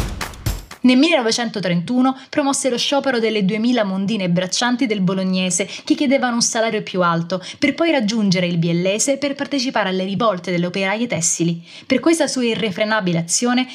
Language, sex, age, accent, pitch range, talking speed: Italian, female, 20-39, native, 190-255 Hz, 150 wpm